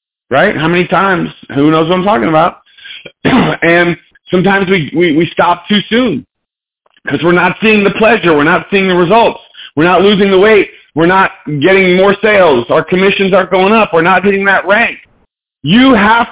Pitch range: 170-220 Hz